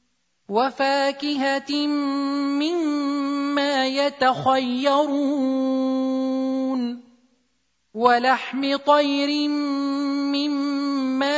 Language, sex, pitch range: Arabic, male, 255-280 Hz